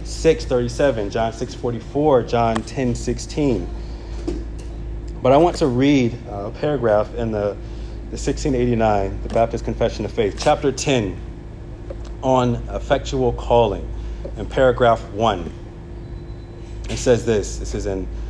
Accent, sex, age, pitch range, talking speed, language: American, male, 40-59, 110-150 Hz, 130 wpm, English